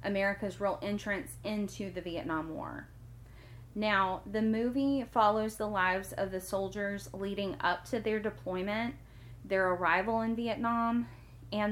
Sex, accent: female, American